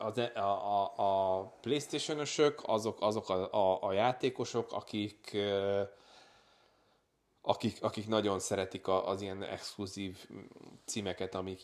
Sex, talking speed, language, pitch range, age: male, 100 wpm, Hungarian, 95-110 Hz, 20-39